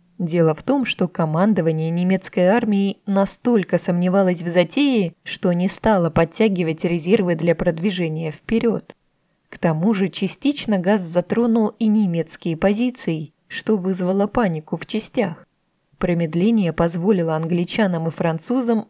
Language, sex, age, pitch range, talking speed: Russian, female, 20-39, 170-220 Hz, 120 wpm